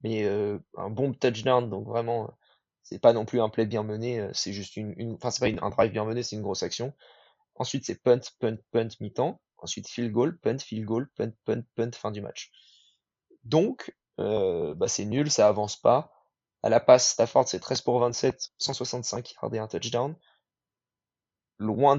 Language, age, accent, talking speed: French, 20-39, French, 195 wpm